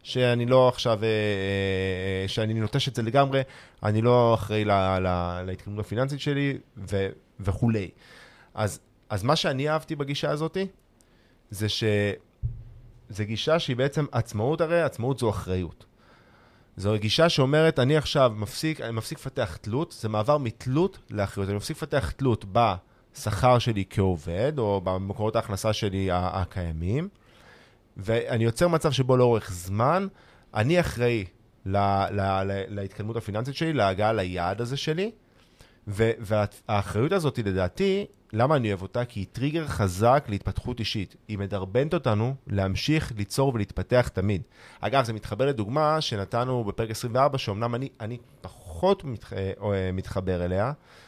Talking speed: 135 wpm